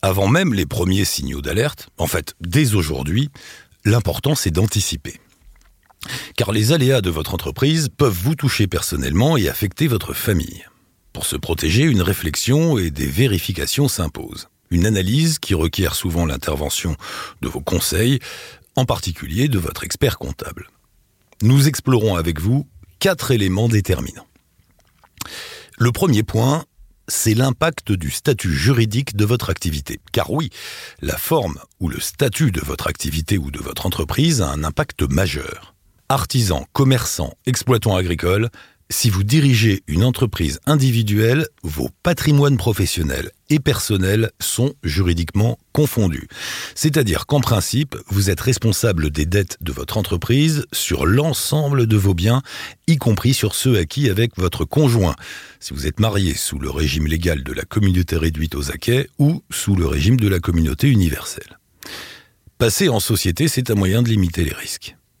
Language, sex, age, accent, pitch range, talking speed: French, male, 50-69, French, 85-130 Hz, 150 wpm